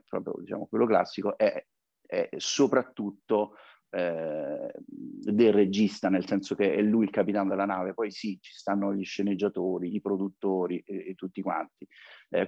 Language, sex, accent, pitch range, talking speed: Italian, male, native, 95-130 Hz, 155 wpm